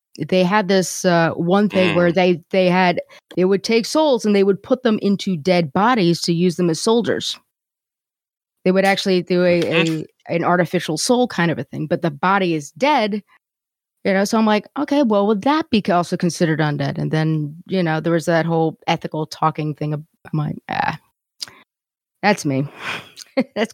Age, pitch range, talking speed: 30-49, 170-205 Hz, 190 wpm